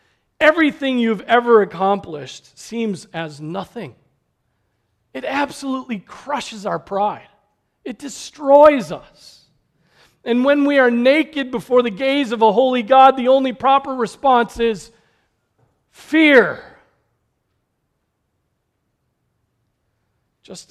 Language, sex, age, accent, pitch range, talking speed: English, male, 40-59, American, 175-240 Hz, 100 wpm